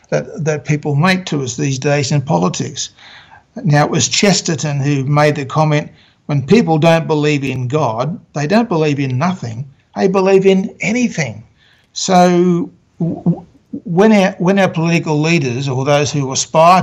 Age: 60-79